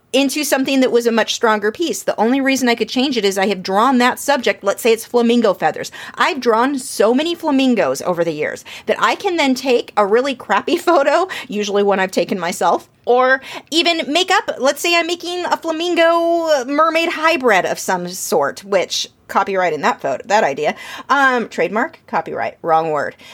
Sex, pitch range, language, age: female, 210-290 Hz, English, 30-49